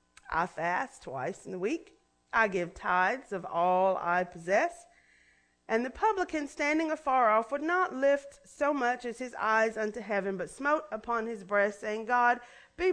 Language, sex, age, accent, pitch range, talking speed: English, female, 40-59, American, 170-280 Hz, 170 wpm